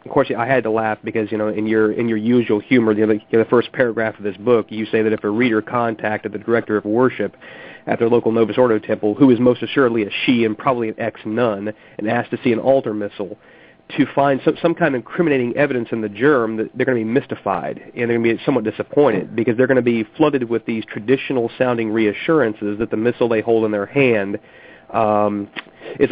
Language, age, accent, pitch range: English, 40-59, American, 110-130 Hz